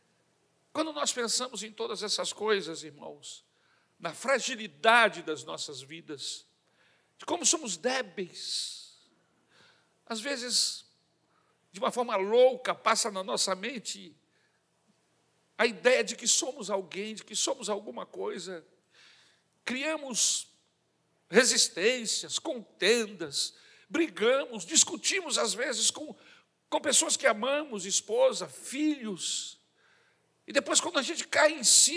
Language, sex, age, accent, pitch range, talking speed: Portuguese, male, 60-79, Brazilian, 240-335 Hz, 115 wpm